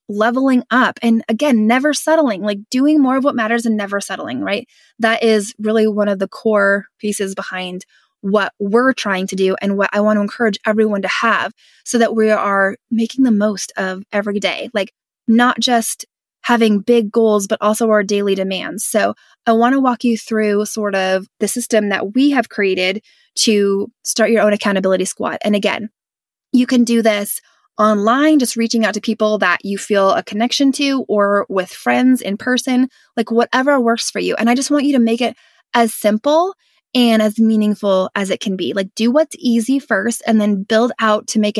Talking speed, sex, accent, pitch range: 200 wpm, female, American, 200-240 Hz